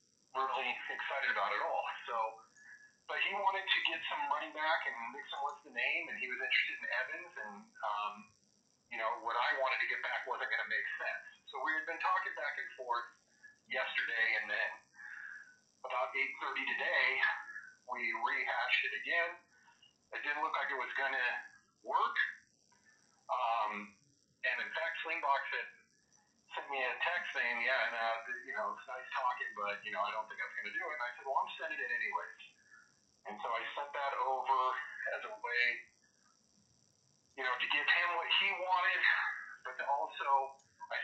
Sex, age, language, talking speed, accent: male, 40-59, English, 185 wpm, American